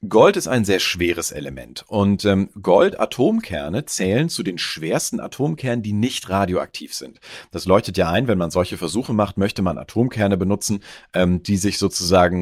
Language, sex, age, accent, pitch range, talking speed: German, male, 40-59, German, 90-115 Hz, 170 wpm